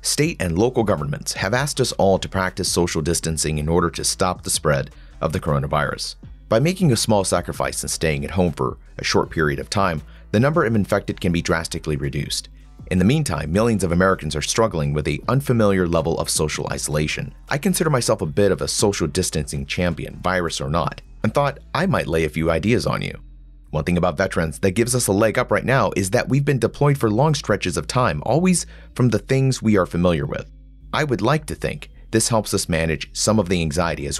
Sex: male